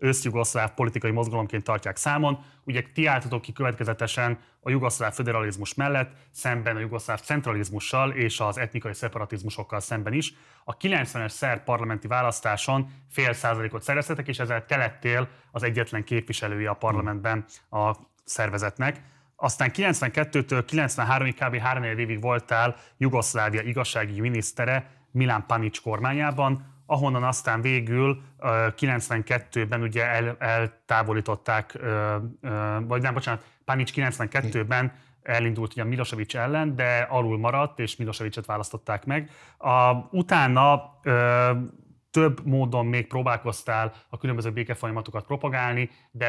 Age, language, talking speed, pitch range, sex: 30-49, Hungarian, 110 wpm, 110-130 Hz, male